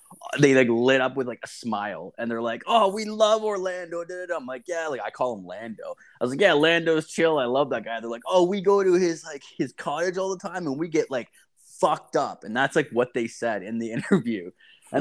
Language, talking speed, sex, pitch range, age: English, 250 wpm, male, 115-160 Hz, 20-39